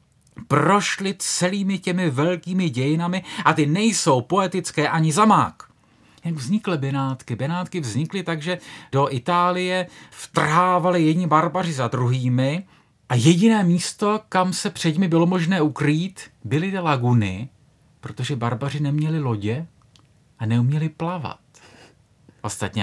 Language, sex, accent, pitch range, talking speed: Czech, male, Slovak, 120-175 Hz, 120 wpm